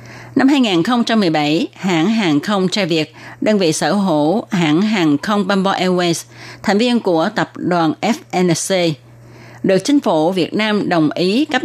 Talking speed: 155 wpm